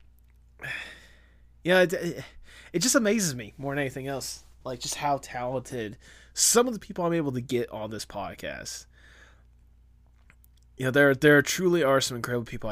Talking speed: 170 wpm